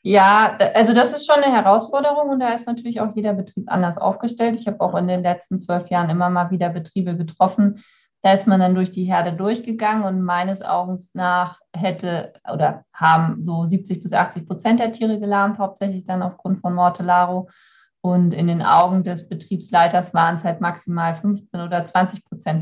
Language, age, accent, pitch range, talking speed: German, 20-39, German, 180-215 Hz, 190 wpm